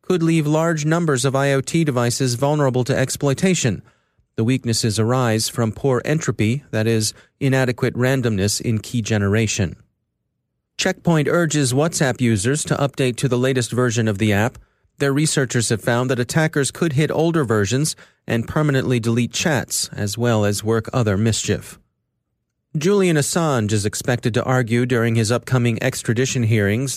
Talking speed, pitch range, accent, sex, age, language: 150 wpm, 115-140 Hz, American, male, 30-49, English